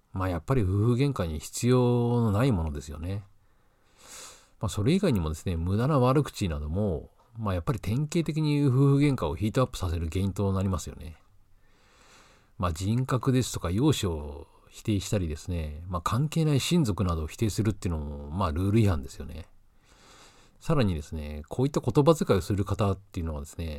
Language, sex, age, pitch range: Japanese, male, 50-69, 90-130 Hz